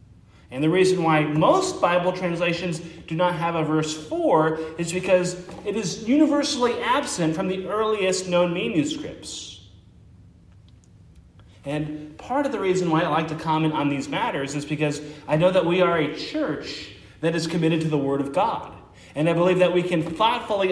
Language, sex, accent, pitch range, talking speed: English, male, American, 145-185 Hz, 175 wpm